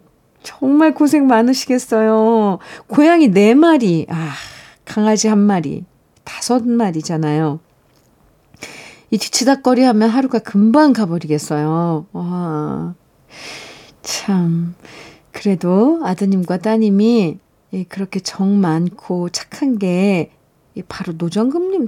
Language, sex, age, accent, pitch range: Korean, female, 40-59, native, 180-260 Hz